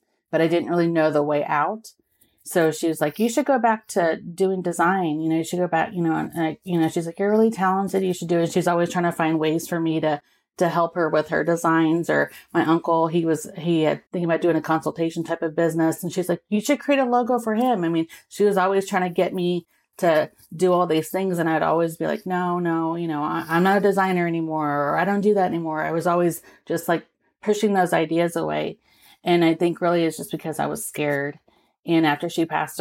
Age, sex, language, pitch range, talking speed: 30-49, female, English, 155-175 Hz, 250 wpm